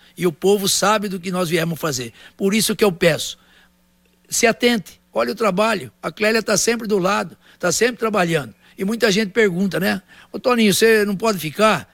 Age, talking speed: 60-79, 195 wpm